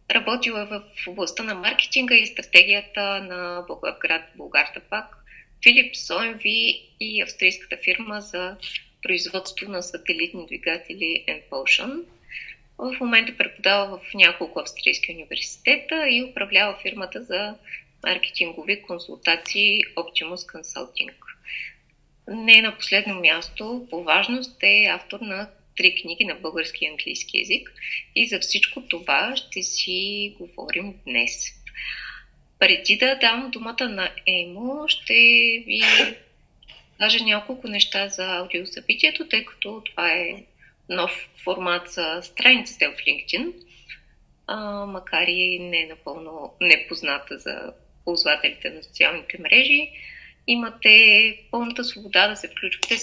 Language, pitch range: Bulgarian, 180-230 Hz